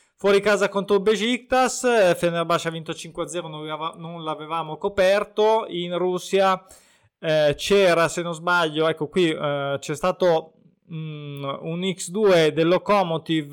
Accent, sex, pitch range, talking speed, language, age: native, male, 155-200 Hz, 135 wpm, Italian, 20-39